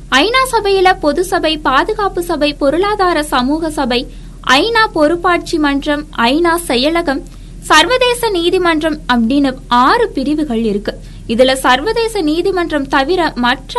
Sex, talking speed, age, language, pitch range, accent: female, 90 wpm, 20-39, Tamil, 255-360 Hz, native